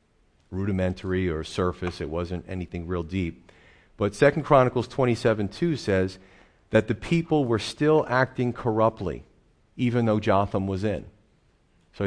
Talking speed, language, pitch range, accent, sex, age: 145 wpm, English, 90-115 Hz, American, male, 40-59